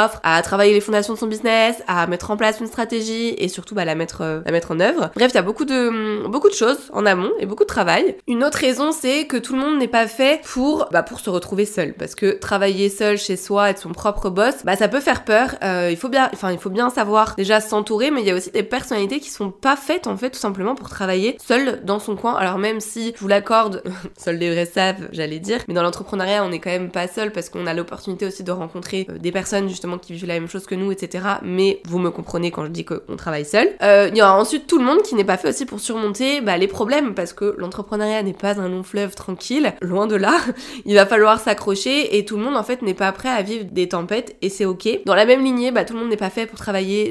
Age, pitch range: 20-39, 185-230 Hz